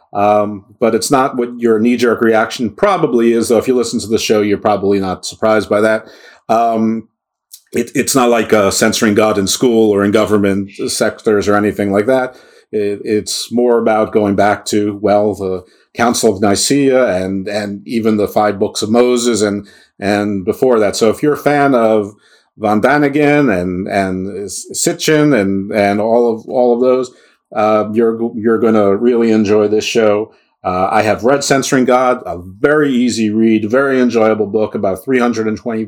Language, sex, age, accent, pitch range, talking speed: English, male, 50-69, American, 100-125 Hz, 175 wpm